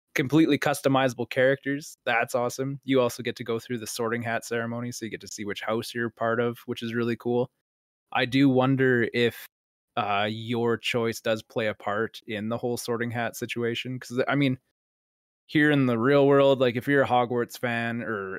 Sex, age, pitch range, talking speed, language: male, 20-39, 110-130 Hz, 200 wpm, English